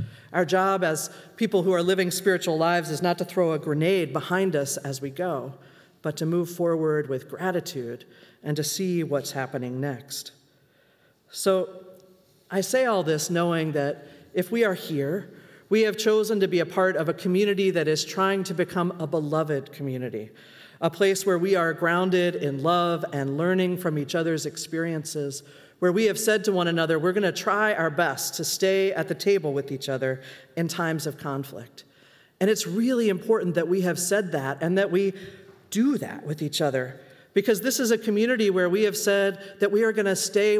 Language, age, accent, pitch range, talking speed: English, 40-59, American, 150-195 Hz, 195 wpm